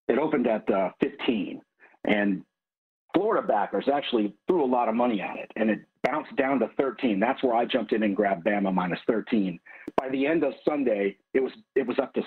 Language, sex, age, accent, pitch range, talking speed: English, male, 50-69, American, 110-145 Hz, 210 wpm